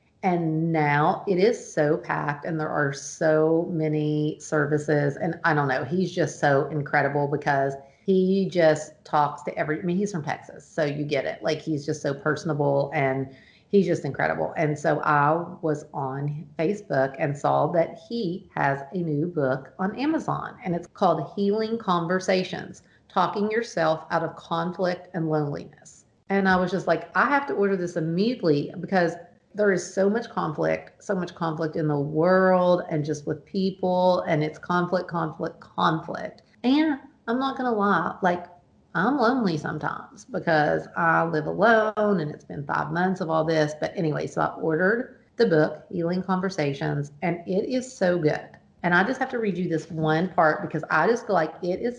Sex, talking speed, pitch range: female, 180 wpm, 150-185 Hz